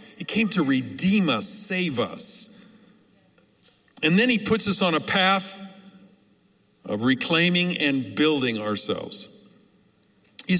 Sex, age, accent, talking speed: male, 50-69, American, 120 wpm